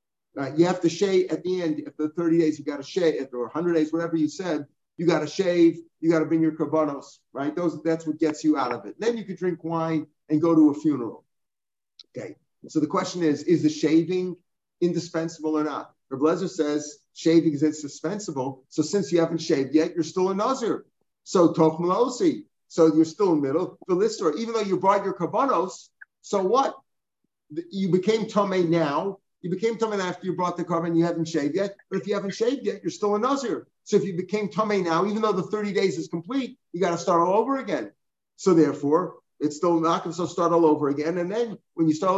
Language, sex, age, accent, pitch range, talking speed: English, male, 50-69, American, 155-190 Hz, 220 wpm